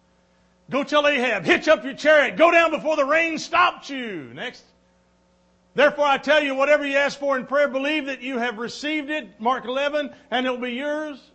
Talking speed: 200 wpm